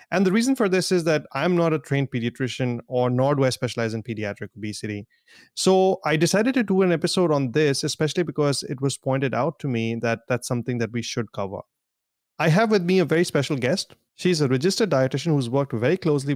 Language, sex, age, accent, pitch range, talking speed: English, male, 30-49, Indian, 125-165 Hz, 220 wpm